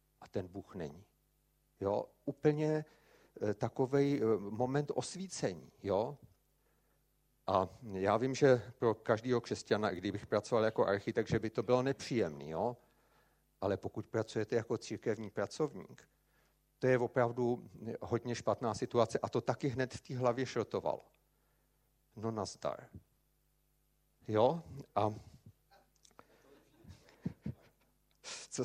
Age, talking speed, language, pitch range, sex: 50-69, 105 wpm, Czech, 100-125 Hz, male